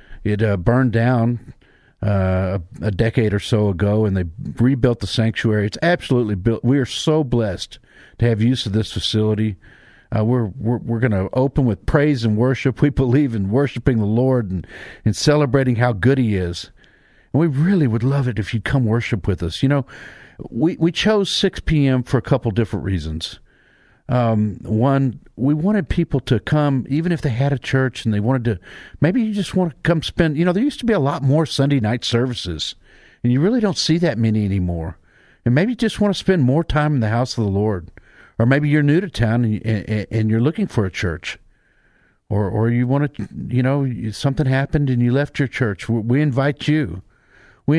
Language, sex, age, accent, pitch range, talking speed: English, male, 50-69, American, 110-140 Hz, 205 wpm